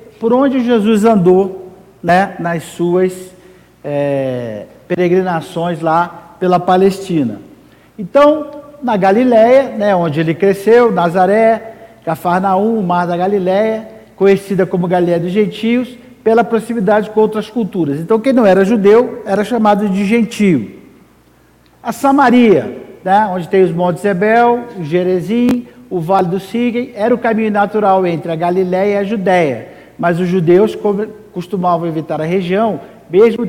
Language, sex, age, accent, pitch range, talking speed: Portuguese, male, 50-69, Brazilian, 180-220 Hz, 135 wpm